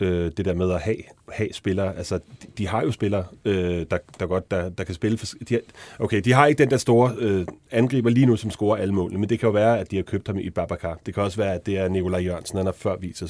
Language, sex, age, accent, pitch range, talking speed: Danish, male, 30-49, native, 90-115 Hz, 295 wpm